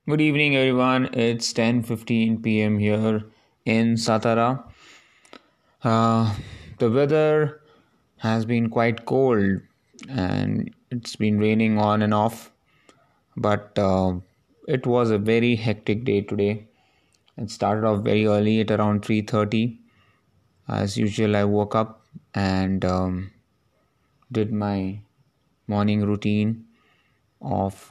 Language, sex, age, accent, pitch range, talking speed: English, male, 20-39, Indian, 100-115 Hz, 110 wpm